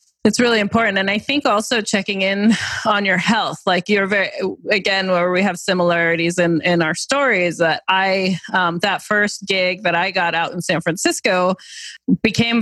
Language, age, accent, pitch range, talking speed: English, 20-39, American, 180-225 Hz, 180 wpm